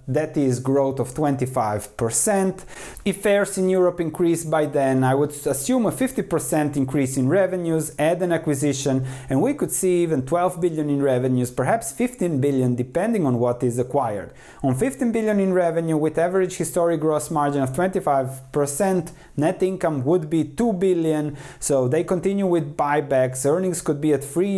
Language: English